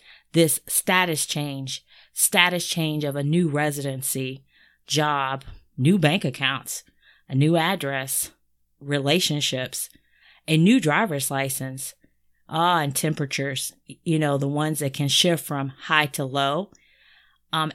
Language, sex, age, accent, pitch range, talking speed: English, female, 30-49, American, 140-190 Hz, 120 wpm